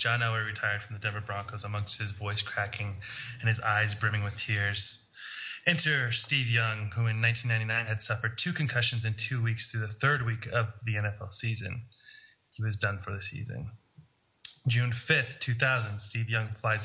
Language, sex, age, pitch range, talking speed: English, male, 20-39, 110-125 Hz, 180 wpm